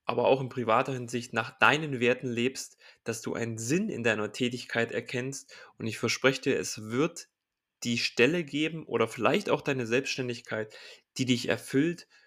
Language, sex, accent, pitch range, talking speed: German, male, German, 120-150 Hz, 165 wpm